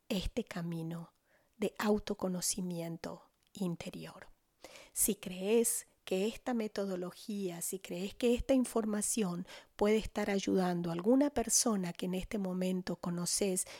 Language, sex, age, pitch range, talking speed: Spanish, female, 40-59, 185-230 Hz, 115 wpm